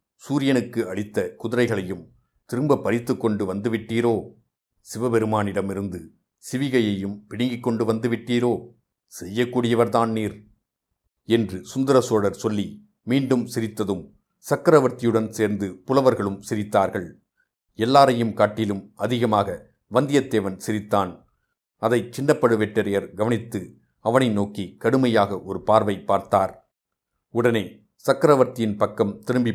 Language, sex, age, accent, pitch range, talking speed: Tamil, male, 60-79, native, 105-125 Hz, 85 wpm